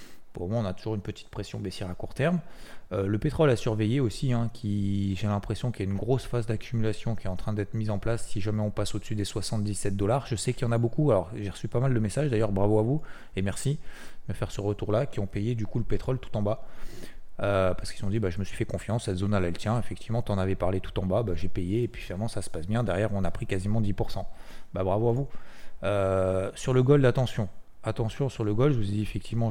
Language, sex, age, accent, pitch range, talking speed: French, male, 30-49, French, 100-120 Hz, 280 wpm